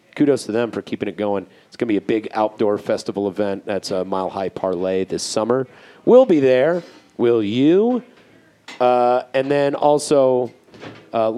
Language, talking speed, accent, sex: English, 175 wpm, American, male